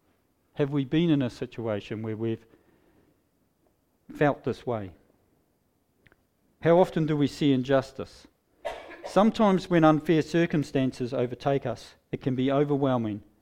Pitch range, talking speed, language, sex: 115-150 Hz, 120 wpm, English, male